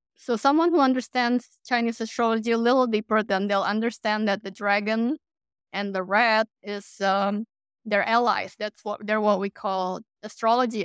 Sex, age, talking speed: female, 20-39, 160 wpm